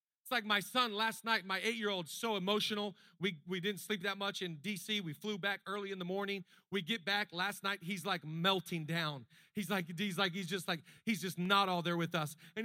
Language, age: English, 40-59